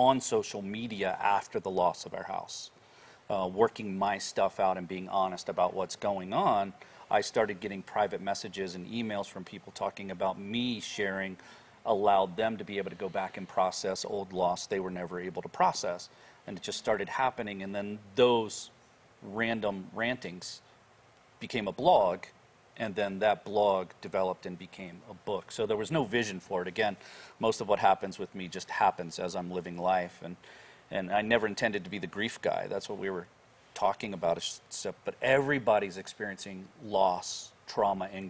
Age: 40-59